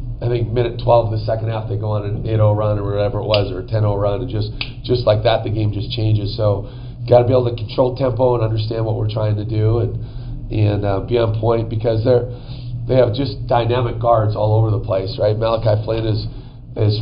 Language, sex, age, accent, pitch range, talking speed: English, male, 40-59, American, 115-125 Hz, 245 wpm